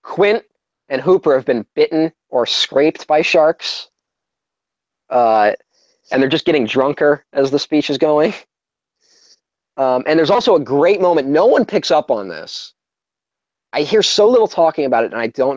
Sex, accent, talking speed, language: male, American, 170 wpm, English